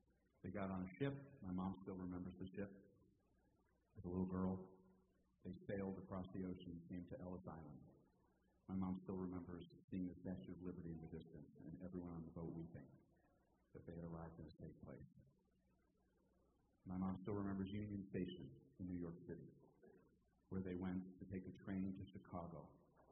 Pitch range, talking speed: 90-95 Hz, 185 wpm